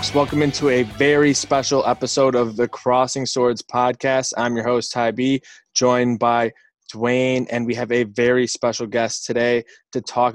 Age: 20-39